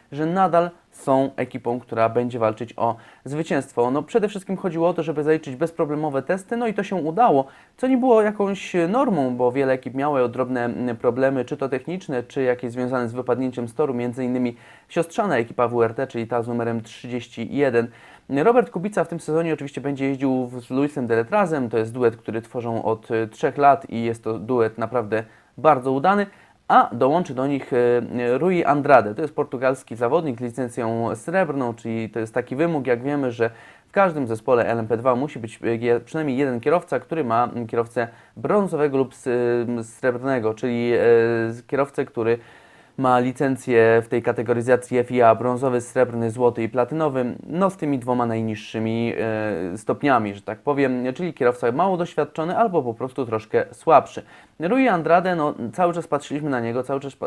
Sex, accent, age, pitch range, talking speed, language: male, Polish, 20-39, 120-150 Hz, 165 wpm, English